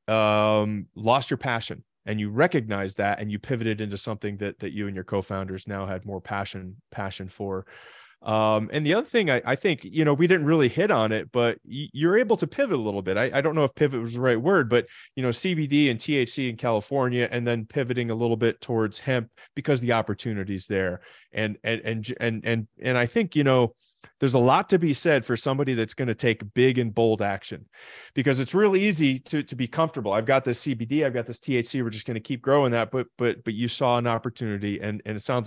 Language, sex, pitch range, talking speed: English, male, 105-135 Hz, 235 wpm